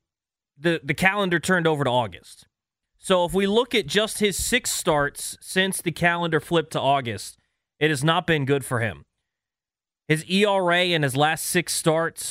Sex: male